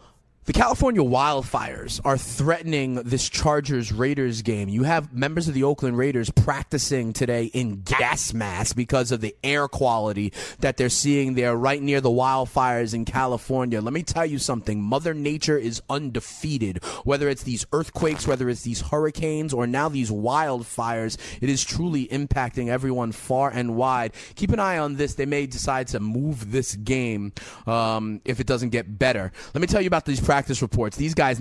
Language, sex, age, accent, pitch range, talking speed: English, male, 30-49, American, 120-145 Hz, 180 wpm